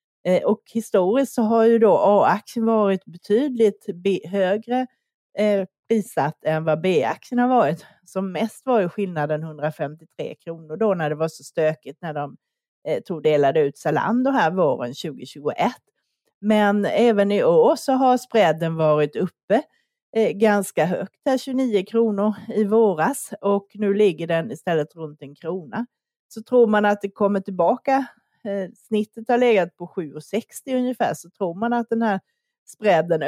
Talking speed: 155 wpm